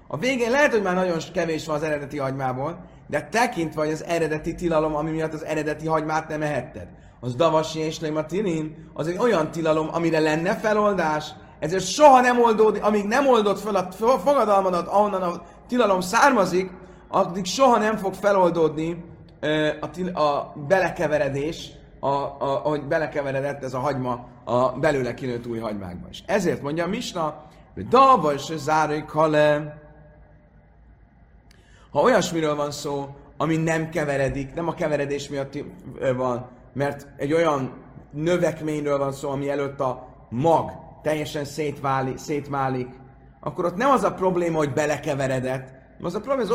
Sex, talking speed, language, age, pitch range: male, 150 wpm, Hungarian, 30-49, 140-185 Hz